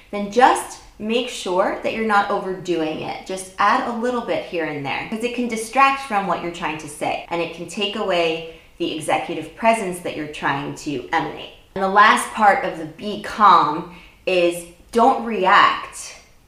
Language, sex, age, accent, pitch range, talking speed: English, female, 20-39, American, 165-215 Hz, 185 wpm